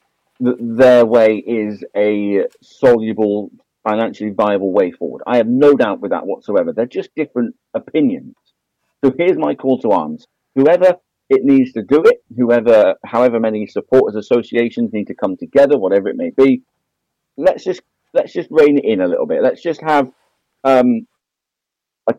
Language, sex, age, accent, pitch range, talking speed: English, male, 50-69, British, 110-160 Hz, 160 wpm